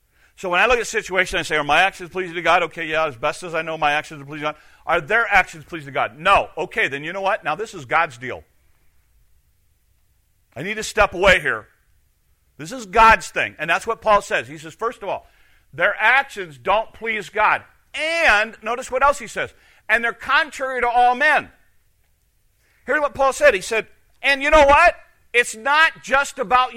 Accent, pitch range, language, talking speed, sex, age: American, 150-255 Hz, English, 215 wpm, male, 50-69